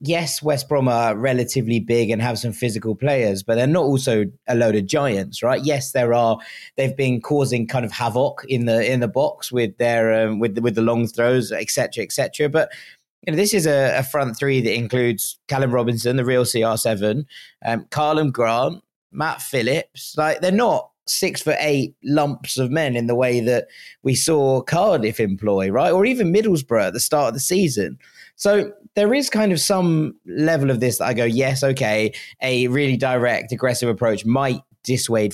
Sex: male